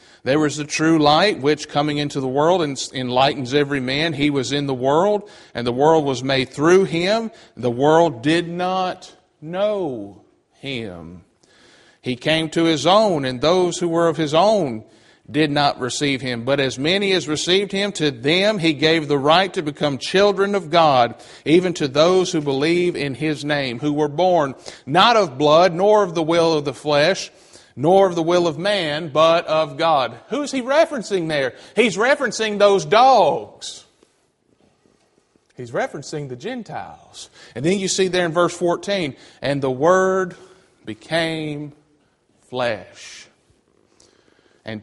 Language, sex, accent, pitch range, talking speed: English, male, American, 135-180 Hz, 160 wpm